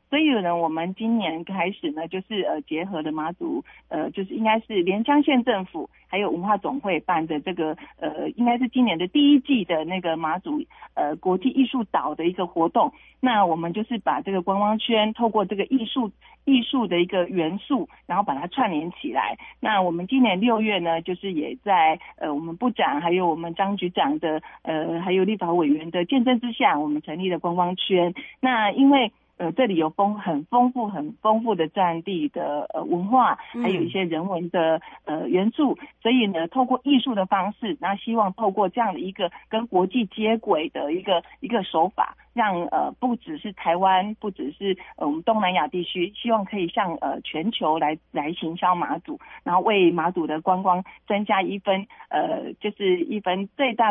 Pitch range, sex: 175-240 Hz, female